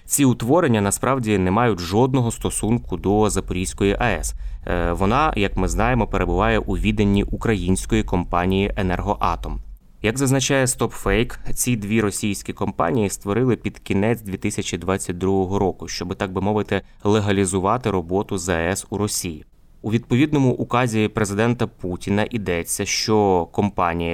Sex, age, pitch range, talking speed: male, 20-39, 95-115 Hz, 120 wpm